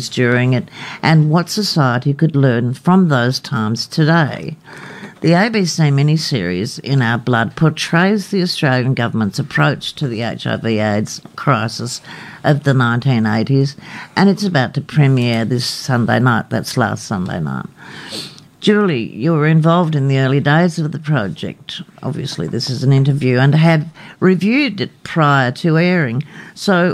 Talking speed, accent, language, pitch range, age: 145 wpm, Australian, English, 130-175 Hz, 60-79